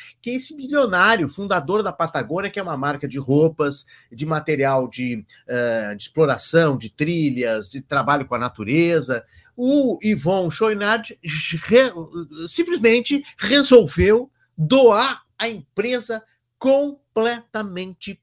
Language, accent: Portuguese, Brazilian